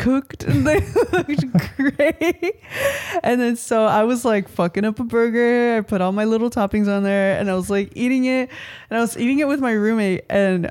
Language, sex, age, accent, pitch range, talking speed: English, female, 20-39, American, 215-295 Hz, 215 wpm